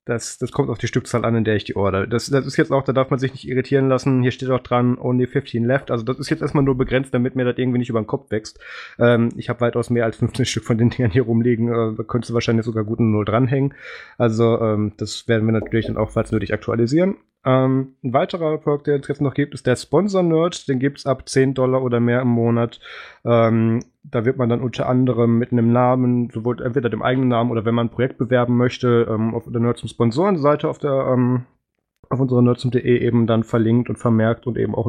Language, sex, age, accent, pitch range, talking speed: German, male, 20-39, German, 115-130 Hz, 250 wpm